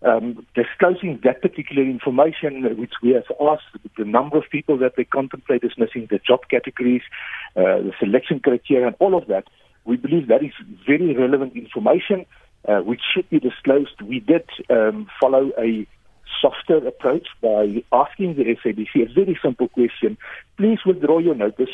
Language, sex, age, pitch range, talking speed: English, male, 60-79, 130-180 Hz, 165 wpm